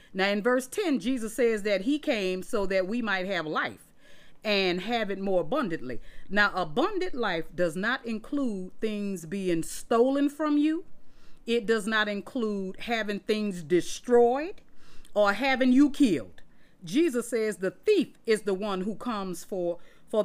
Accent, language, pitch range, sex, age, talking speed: American, English, 185-265 Hz, female, 40-59, 155 wpm